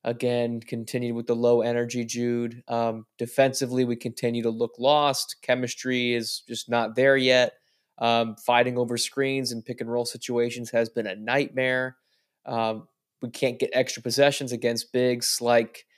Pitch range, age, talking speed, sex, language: 115-130 Hz, 20-39, 155 wpm, male, English